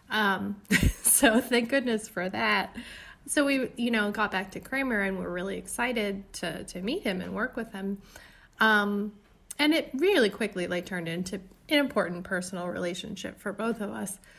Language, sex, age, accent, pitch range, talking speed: English, female, 20-39, American, 180-215 Hz, 175 wpm